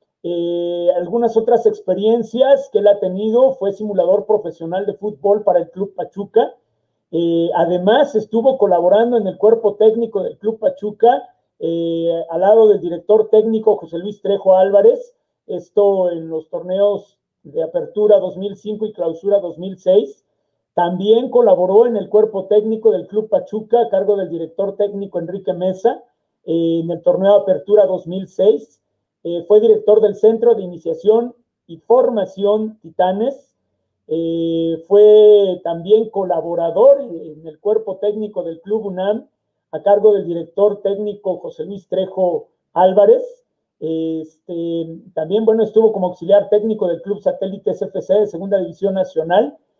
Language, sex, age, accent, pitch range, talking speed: Spanish, male, 50-69, Mexican, 180-220 Hz, 135 wpm